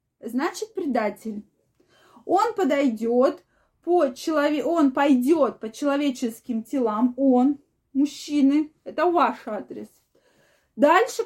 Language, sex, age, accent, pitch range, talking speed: Russian, female, 20-39, native, 235-305 Hz, 90 wpm